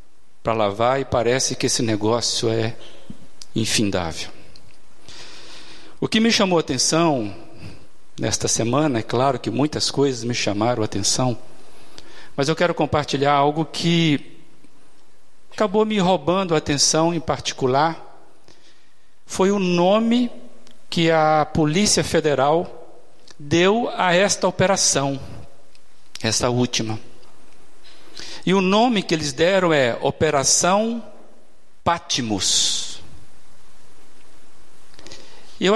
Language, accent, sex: Portuguese, Brazilian, male